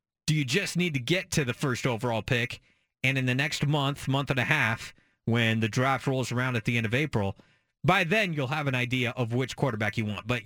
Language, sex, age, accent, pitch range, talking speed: English, male, 30-49, American, 115-155 Hz, 240 wpm